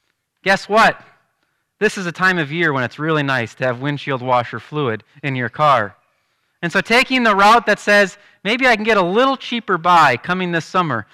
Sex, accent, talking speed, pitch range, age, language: male, American, 205 wpm, 145-210 Hz, 30-49, English